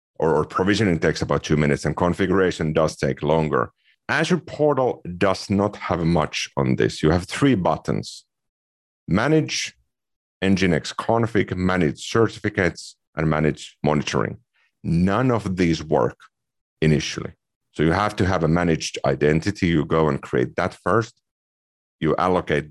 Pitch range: 75-100 Hz